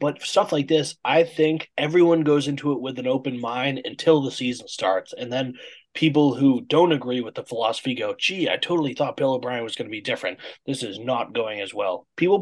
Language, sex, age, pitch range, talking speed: English, male, 20-39, 130-200 Hz, 220 wpm